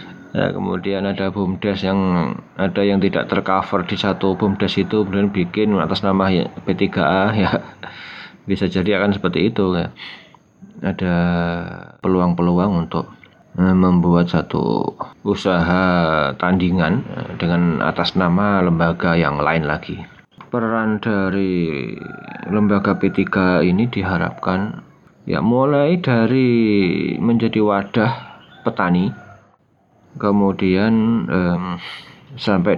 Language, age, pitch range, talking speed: Indonesian, 30-49, 90-105 Hz, 100 wpm